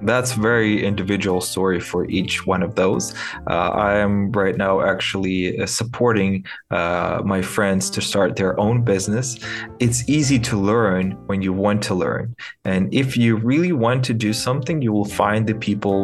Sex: male